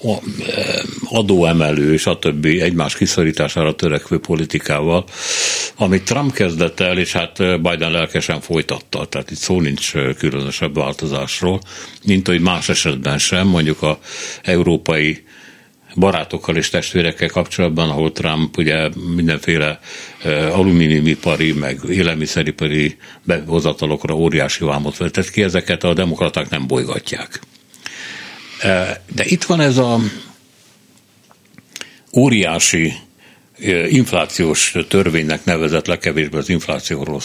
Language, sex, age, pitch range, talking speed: Hungarian, male, 60-79, 80-95 Hz, 105 wpm